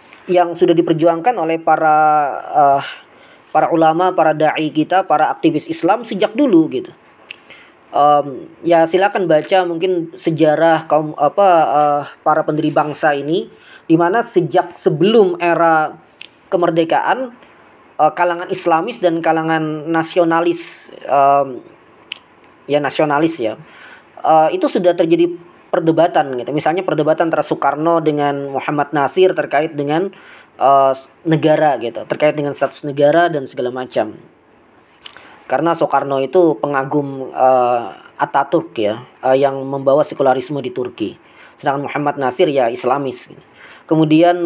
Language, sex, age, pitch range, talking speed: Indonesian, female, 20-39, 145-170 Hz, 120 wpm